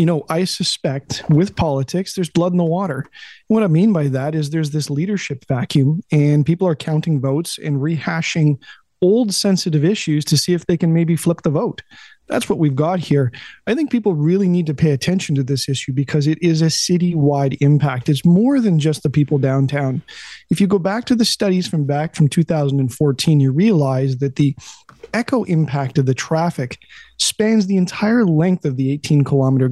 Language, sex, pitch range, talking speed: English, male, 145-180 Hz, 195 wpm